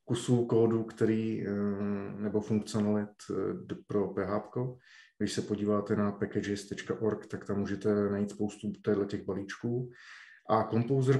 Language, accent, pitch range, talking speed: Czech, native, 105-115 Hz, 115 wpm